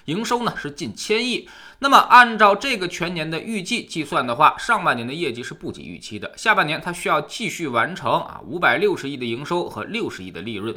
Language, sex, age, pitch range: Chinese, male, 20-39, 145-230 Hz